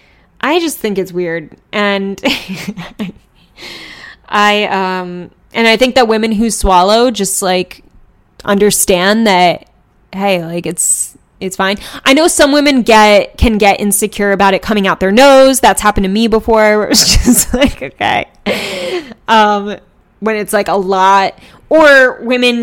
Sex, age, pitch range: female, 10-29, 195-230 Hz